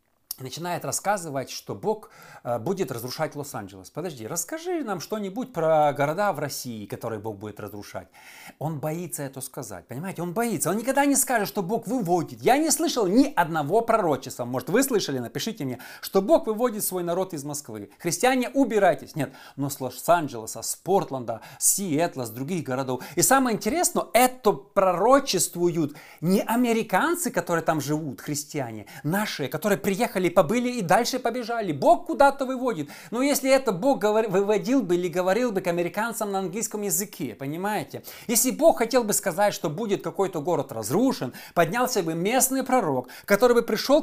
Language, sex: Russian, male